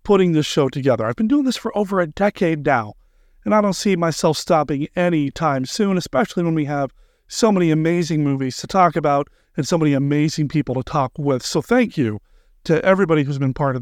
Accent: American